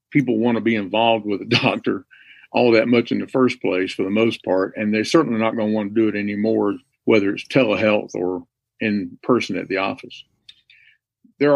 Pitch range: 120-150 Hz